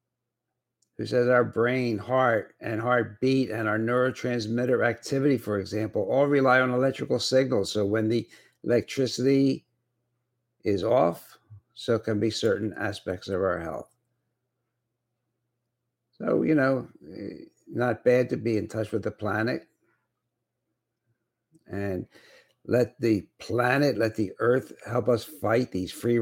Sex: male